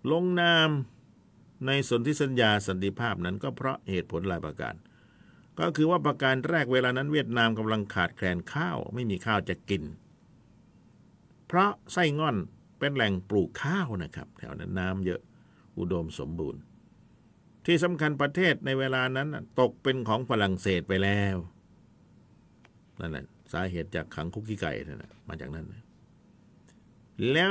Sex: male